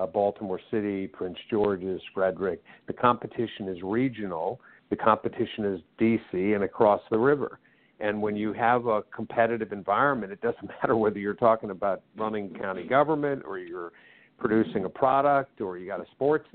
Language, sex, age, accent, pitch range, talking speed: English, male, 50-69, American, 105-120 Hz, 160 wpm